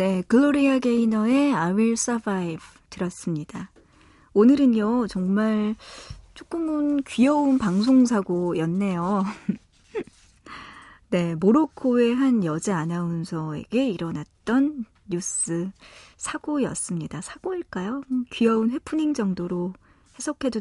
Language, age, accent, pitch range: Korean, 40-59, native, 185-245 Hz